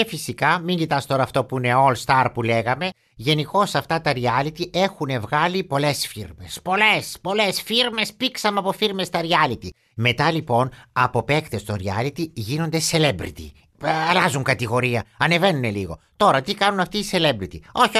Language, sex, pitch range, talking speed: Greek, male, 130-190 Hz, 155 wpm